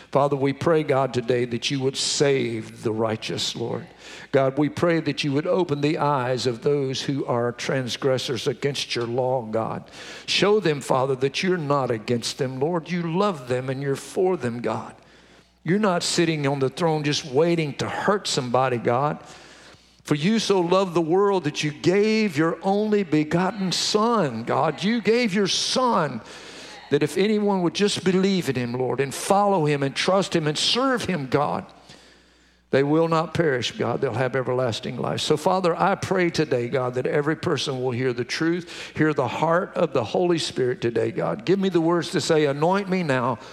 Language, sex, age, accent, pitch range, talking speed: English, male, 50-69, American, 130-180 Hz, 185 wpm